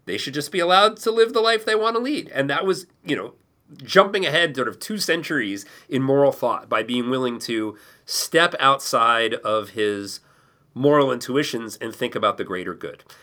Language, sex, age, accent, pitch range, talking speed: English, male, 30-49, American, 110-140 Hz, 195 wpm